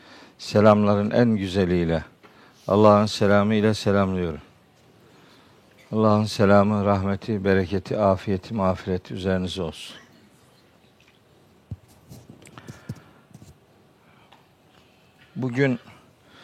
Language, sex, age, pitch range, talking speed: Turkish, male, 60-79, 100-120 Hz, 60 wpm